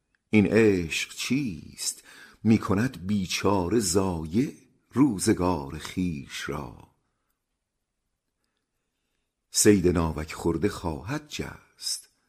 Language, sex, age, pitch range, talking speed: Persian, male, 50-69, 80-100 Hz, 70 wpm